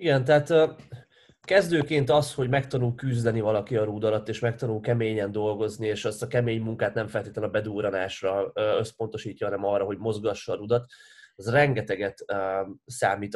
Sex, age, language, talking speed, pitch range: male, 20-39, Hungarian, 150 wpm, 110-130 Hz